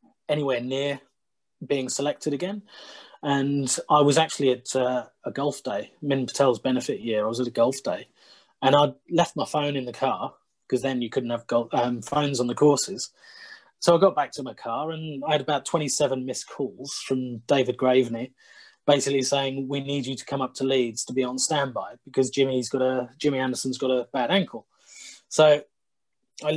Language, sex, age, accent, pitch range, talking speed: English, male, 30-49, British, 130-150 Hz, 195 wpm